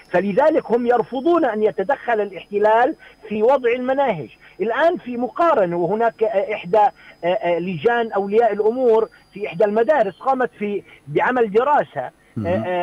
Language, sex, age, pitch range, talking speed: Arabic, male, 50-69, 190-245 Hz, 110 wpm